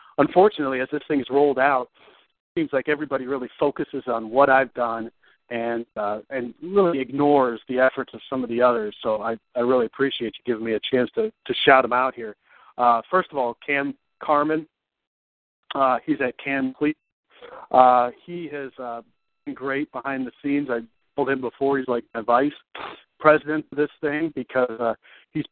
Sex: male